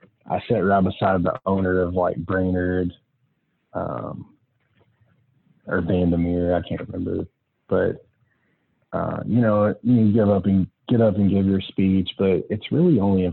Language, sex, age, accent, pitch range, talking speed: English, male, 20-39, American, 90-100 Hz, 140 wpm